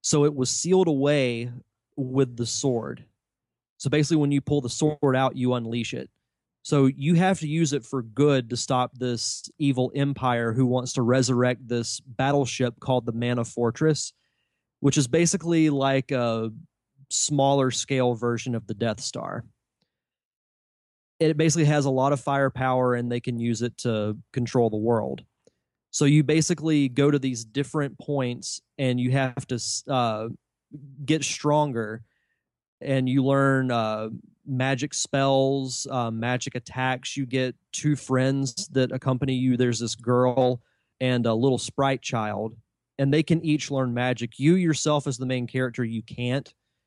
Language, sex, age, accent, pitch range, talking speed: English, male, 30-49, American, 120-140 Hz, 155 wpm